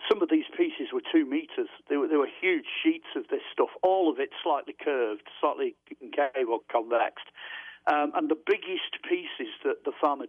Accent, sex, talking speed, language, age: British, male, 180 wpm, English, 50-69